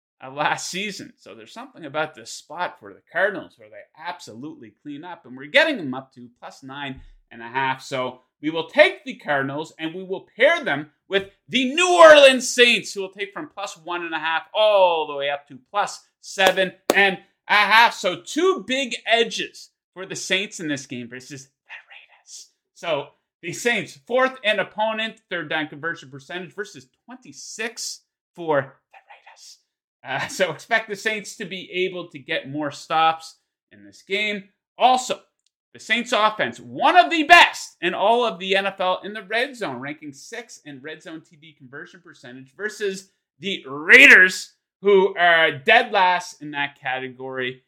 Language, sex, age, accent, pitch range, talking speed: English, male, 30-49, American, 145-215 Hz, 175 wpm